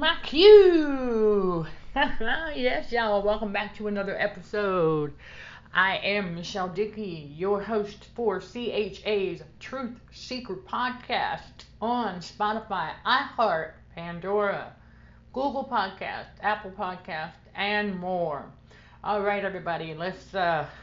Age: 50-69